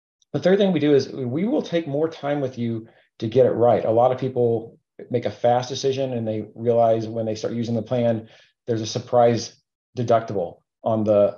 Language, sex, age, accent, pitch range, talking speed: English, male, 40-59, American, 110-130 Hz, 210 wpm